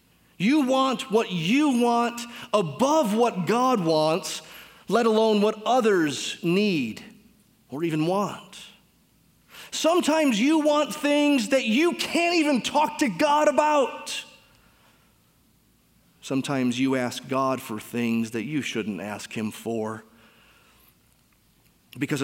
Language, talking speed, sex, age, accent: English, 115 wpm, male, 30-49, American